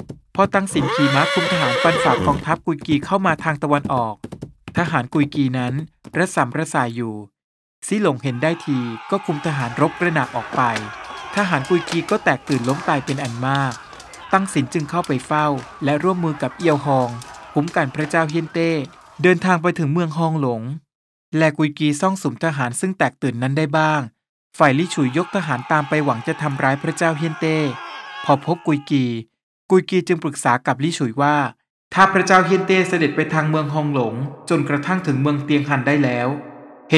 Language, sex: Thai, male